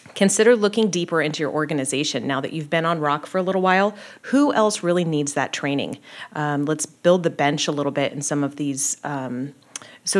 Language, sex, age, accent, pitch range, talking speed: English, female, 30-49, American, 150-185 Hz, 210 wpm